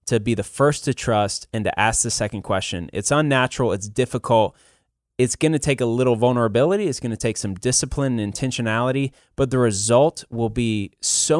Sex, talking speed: male, 195 wpm